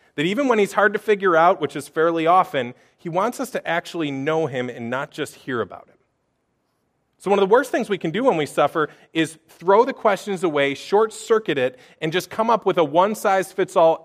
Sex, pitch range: male, 135-195 Hz